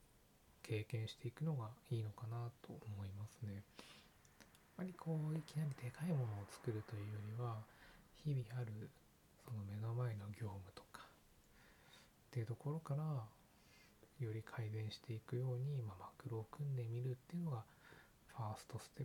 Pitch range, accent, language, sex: 105-135 Hz, native, Japanese, male